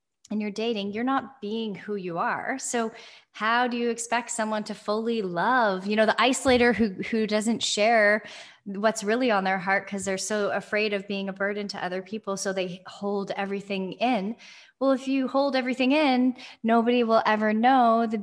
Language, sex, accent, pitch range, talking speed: English, female, American, 200-240 Hz, 190 wpm